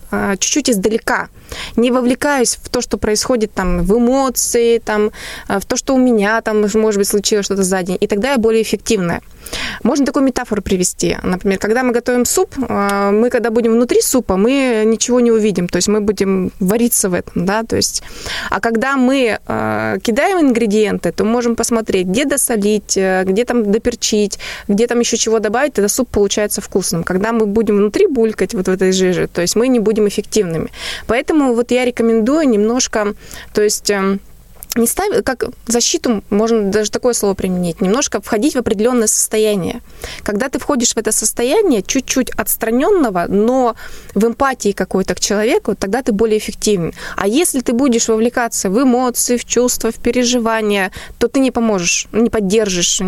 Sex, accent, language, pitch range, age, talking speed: female, native, Russian, 205-245 Hz, 20-39, 170 wpm